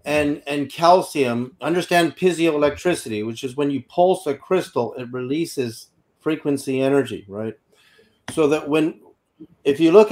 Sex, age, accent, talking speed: male, 40-59, American, 135 wpm